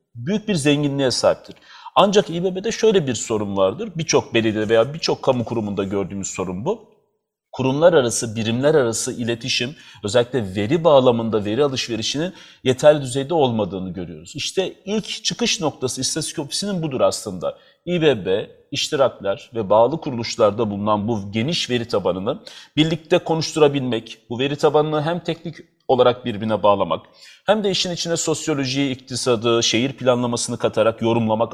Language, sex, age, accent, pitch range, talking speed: Turkish, male, 40-59, native, 115-165 Hz, 135 wpm